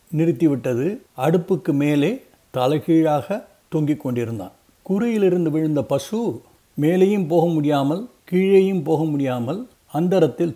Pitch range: 140-175 Hz